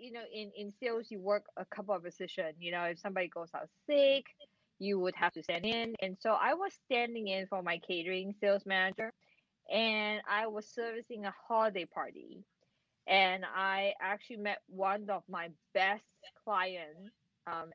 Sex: female